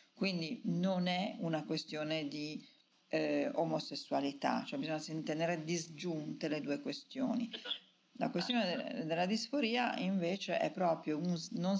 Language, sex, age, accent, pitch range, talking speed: Italian, female, 50-69, native, 145-190 Hz, 130 wpm